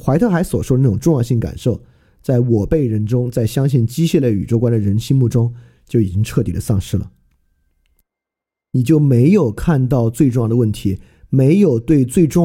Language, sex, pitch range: Chinese, male, 110-150 Hz